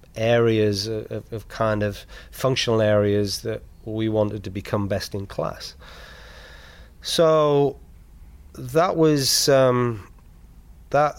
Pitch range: 100-115 Hz